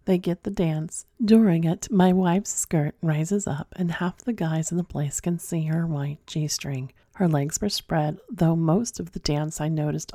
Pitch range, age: 160-185 Hz, 40-59